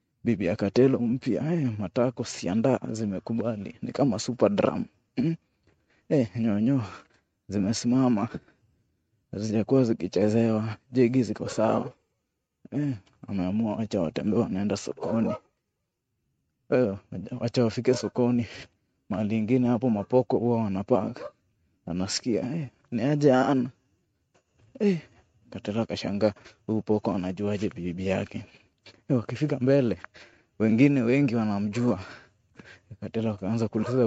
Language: Swahili